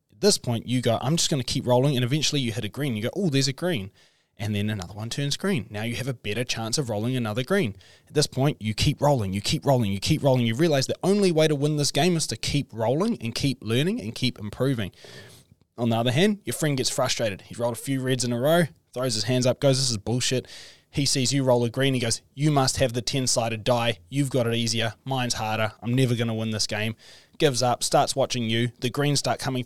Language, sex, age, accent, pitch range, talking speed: English, male, 20-39, Australian, 120-145 Hz, 265 wpm